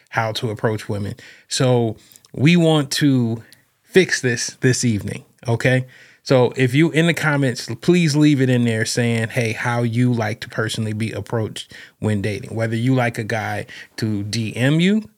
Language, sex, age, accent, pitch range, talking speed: English, male, 30-49, American, 110-130 Hz, 170 wpm